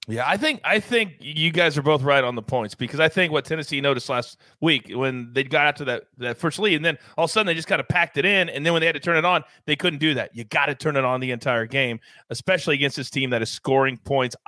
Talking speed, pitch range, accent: 305 wpm, 140-185 Hz, American